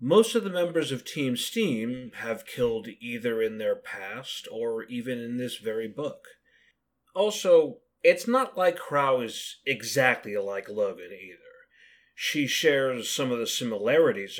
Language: English